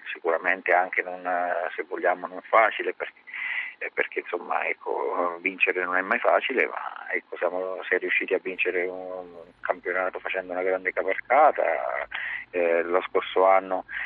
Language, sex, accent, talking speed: Italian, male, native, 145 wpm